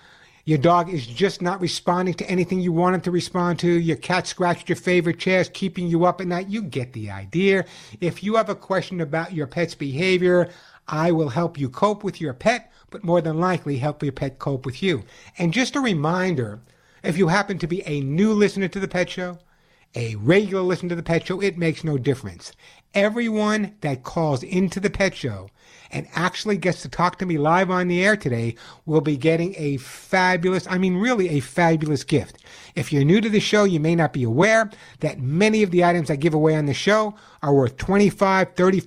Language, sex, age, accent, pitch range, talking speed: English, male, 60-79, American, 150-190 Hz, 215 wpm